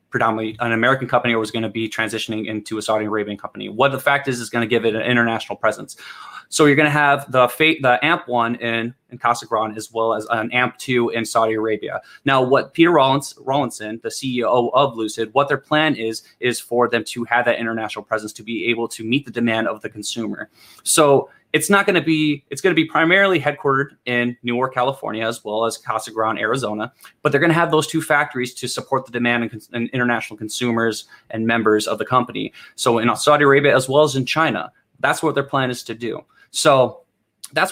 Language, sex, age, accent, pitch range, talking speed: English, male, 20-39, American, 115-135 Hz, 220 wpm